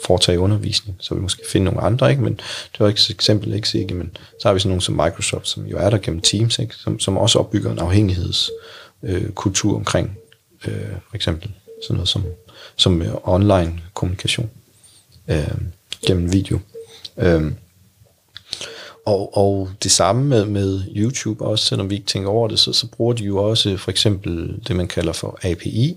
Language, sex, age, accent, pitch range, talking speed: Danish, male, 30-49, native, 95-115 Hz, 185 wpm